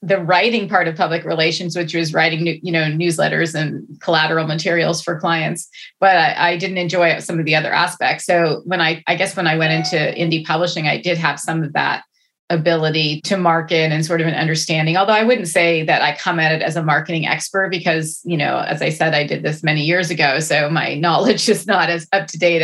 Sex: female